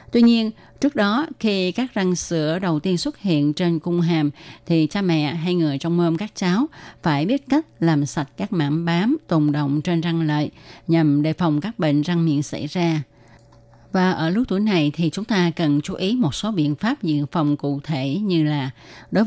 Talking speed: 210 wpm